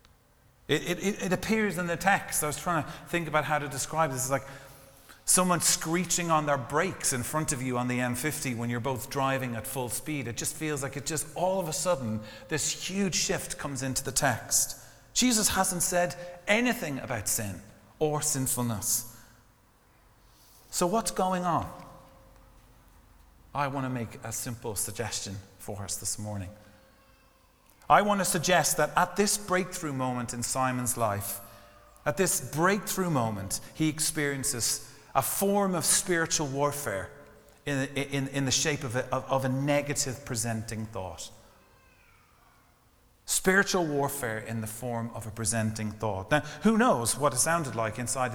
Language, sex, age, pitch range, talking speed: English, male, 40-59, 115-160 Hz, 160 wpm